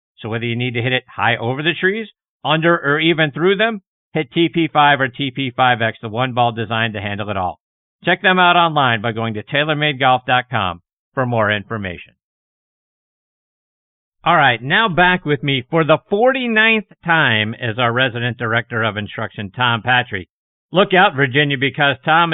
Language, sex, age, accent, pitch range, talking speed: English, male, 50-69, American, 120-165 Hz, 165 wpm